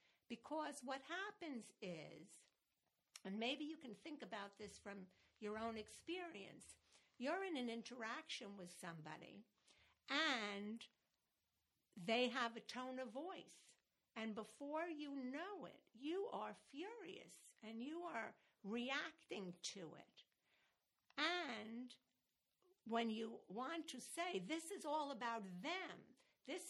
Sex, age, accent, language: female, 60-79, American, English